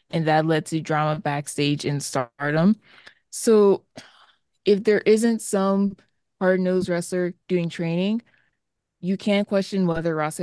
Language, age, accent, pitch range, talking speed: English, 20-39, American, 165-205 Hz, 130 wpm